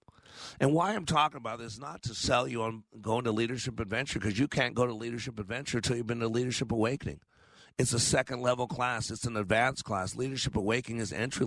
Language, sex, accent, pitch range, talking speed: English, male, American, 115-135 Hz, 215 wpm